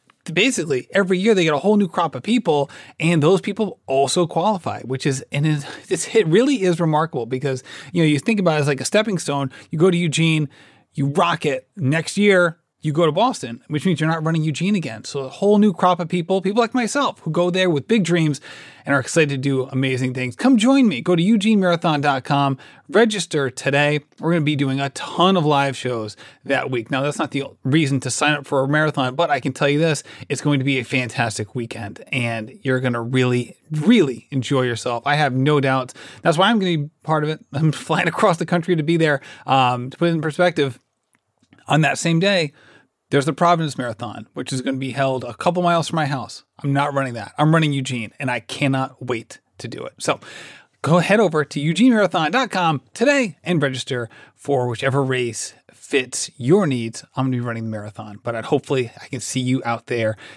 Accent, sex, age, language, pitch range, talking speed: American, male, 30-49, English, 130-175 Hz, 220 wpm